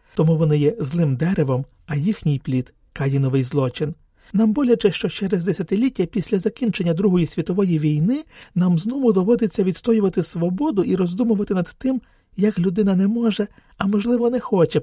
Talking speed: 155 wpm